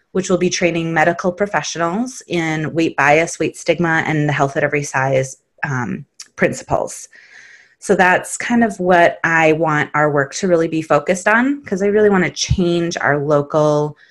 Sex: female